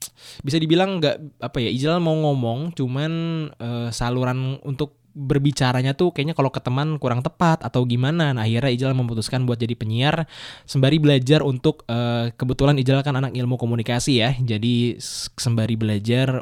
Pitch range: 110-135 Hz